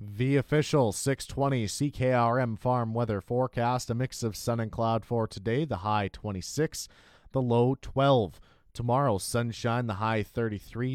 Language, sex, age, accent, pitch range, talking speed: English, male, 30-49, American, 105-130 Hz, 140 wpm